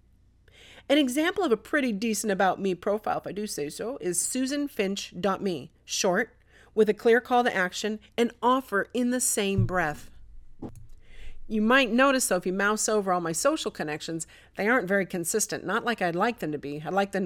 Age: 40-59